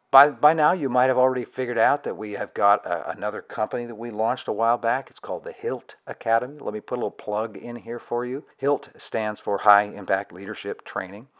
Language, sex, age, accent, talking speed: English, male, 50-69, American, 230 wpm